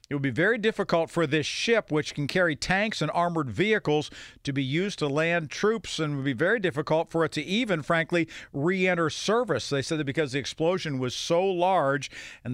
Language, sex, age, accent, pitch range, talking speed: English, male, 50-69, American, 135-170 Hz, 205 wpm